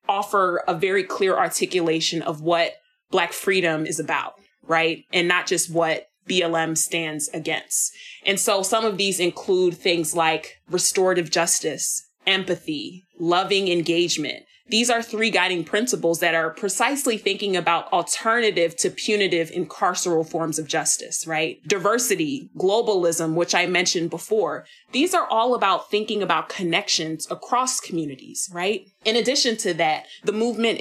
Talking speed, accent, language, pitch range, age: 140 wpm, American, English, 170-205 Hz, 30-49